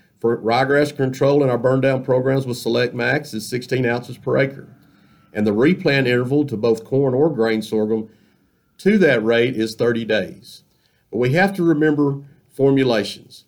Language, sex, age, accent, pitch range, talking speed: English, male, 40-59, American, 115-140 Hz, 170 wpm